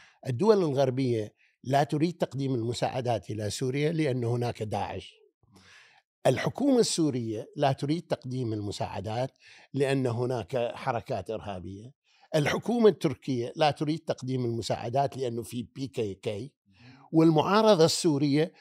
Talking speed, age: 105 wpm, 50-69